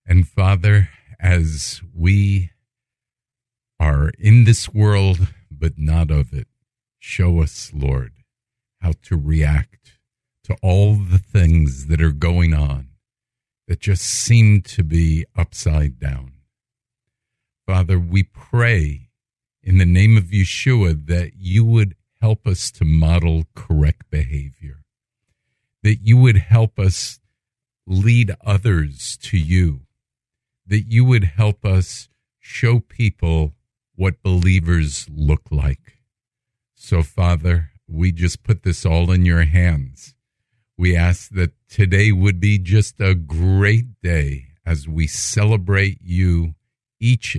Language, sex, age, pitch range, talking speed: English, male, 50-69, 80-115 Hz, 120 wpm